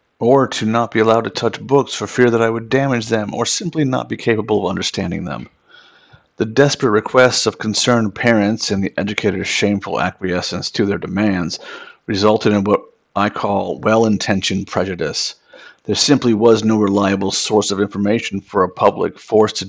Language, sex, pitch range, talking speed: English, male, 100-115 Hz, 175 wpm